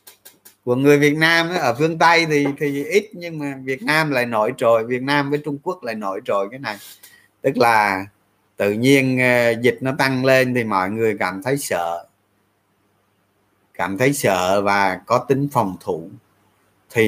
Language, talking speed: Vietnamese, 180 wpm